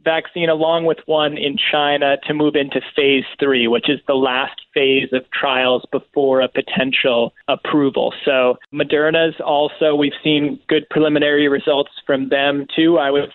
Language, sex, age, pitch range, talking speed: English, male, 20-39, 135-150 Hz, 155 wpm